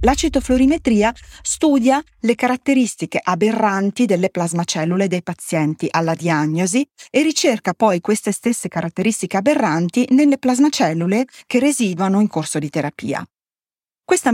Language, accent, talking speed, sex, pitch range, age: Italian, native, 115 wpm, female, 185-255 Hz, 40-59